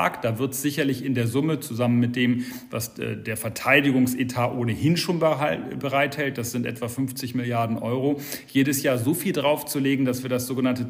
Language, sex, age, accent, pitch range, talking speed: German, male, 40-59, German, 125-145 Hz, 165 wpm